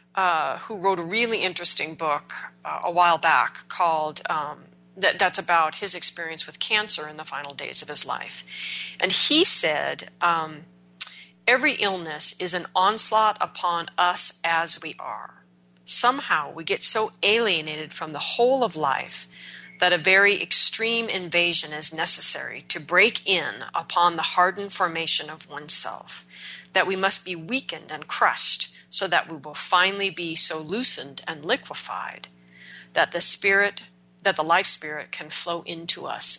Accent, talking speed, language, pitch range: American, 155 wpm, English, 150-190 Hz